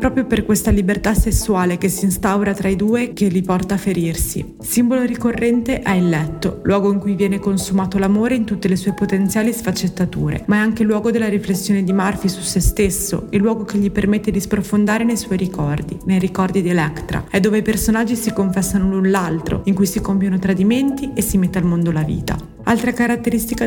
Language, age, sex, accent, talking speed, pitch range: Italian, 30-49, female, native, 205 wpm, 185-220 Hz